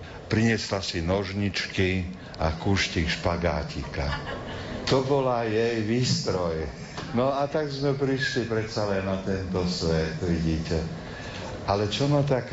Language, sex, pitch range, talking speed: Slovak, male, 85-110 Hz, 120 wpm